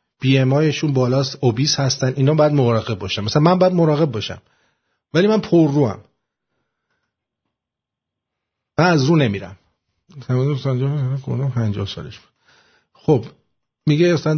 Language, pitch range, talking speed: English, 140-190 Hz, 115 wpm